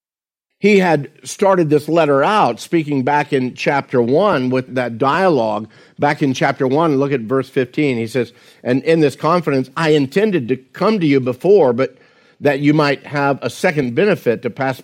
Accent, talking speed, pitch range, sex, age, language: American, 180 wpm, 125-150 Hz, male, 50-69, English